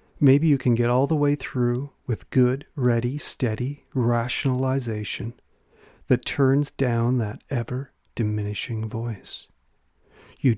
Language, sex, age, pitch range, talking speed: English, male, 40-59, 105-130 Hz, 115 wpm